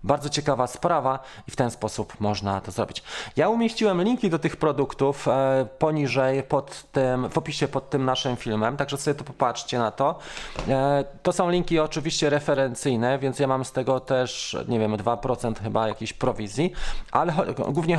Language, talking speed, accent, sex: Polish, 160 wpm, native, male